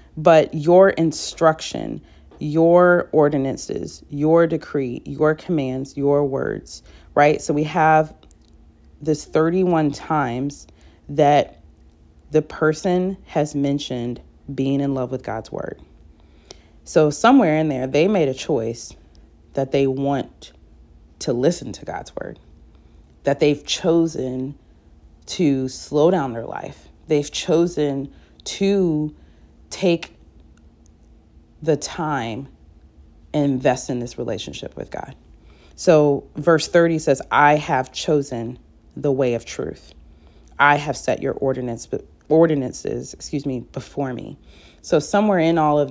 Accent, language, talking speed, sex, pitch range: American, English, 120 wpm, female, 110-155 Hz